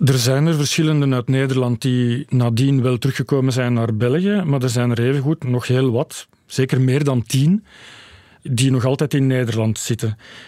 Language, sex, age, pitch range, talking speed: Dutch, male, 40-59, 125-150 Hz, 180 wpm